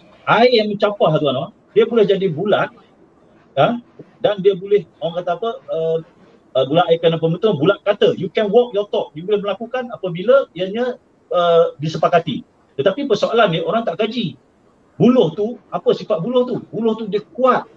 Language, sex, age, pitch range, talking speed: Malay, male, 40-59, 190-230 Hz, 170 wpm